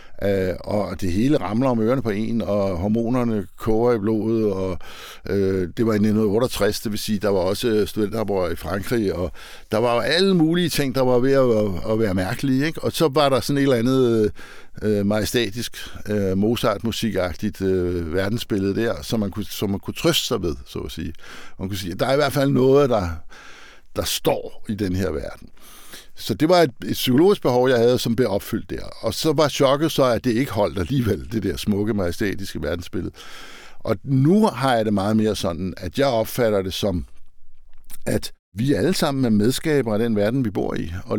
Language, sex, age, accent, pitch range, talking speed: Danish, male, 60-79, native, 100-130 Hz, 205 wpm